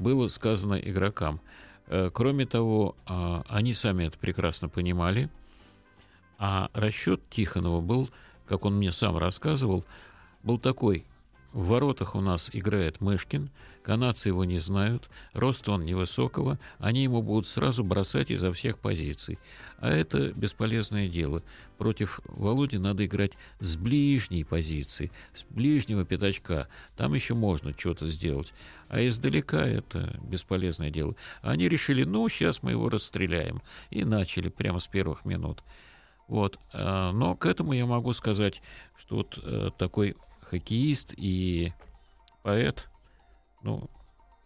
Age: 50-69